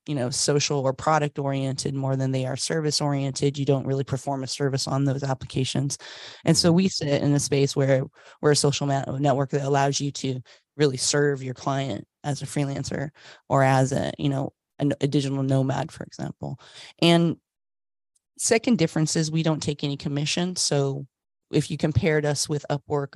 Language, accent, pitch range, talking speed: English, American, 135-150 Hz, 180 wpm